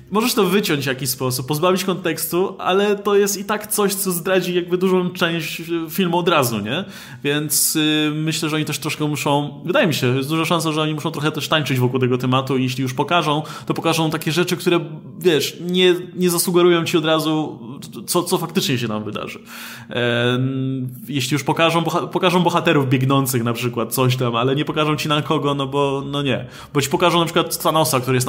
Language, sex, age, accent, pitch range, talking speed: Polish, male, 20-39, native, 130-165 Hz, 210 wpm